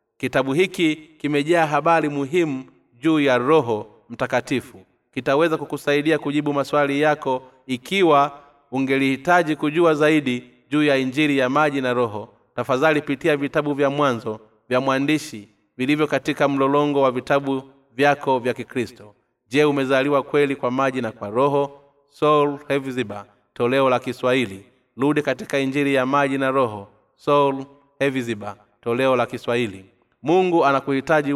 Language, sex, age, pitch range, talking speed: Swahili, male, 30-49, 125-145 Hz, 125 wpm